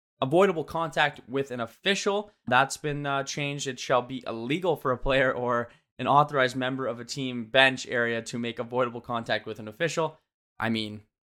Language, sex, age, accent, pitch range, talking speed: English, male, 20-39, American, 115-140 Hz, 180 wpm